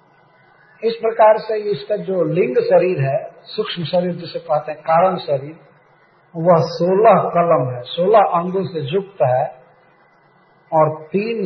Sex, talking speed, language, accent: male, 135 wpm, Hindi, native